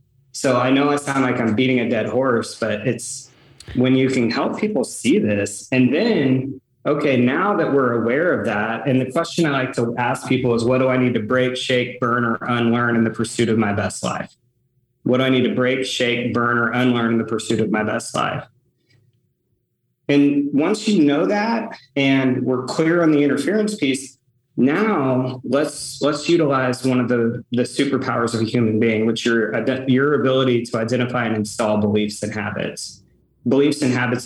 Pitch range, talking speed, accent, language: 120-135 Hz, 195 wpm, American, English